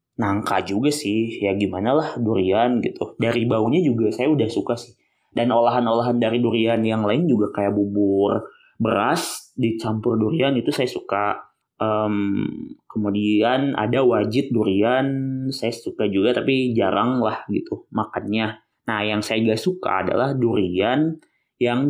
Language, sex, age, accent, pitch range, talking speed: Indonesian, male, 20-39, native, 105-130 Hz, 140 wpm